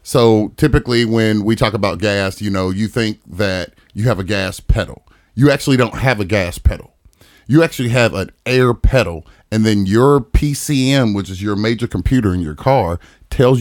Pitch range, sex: 95-125 Hz, male